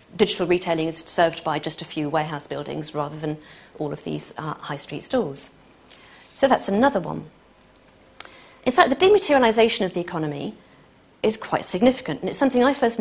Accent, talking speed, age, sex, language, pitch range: British, 175 wpm, 40-59, female, English, 165-215 Hz